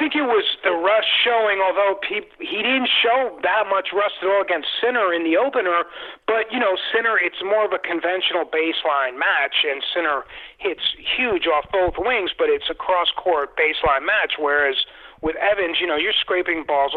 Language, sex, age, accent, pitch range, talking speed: English, male, 40-59, American, 150-210 Hz, 185 wpm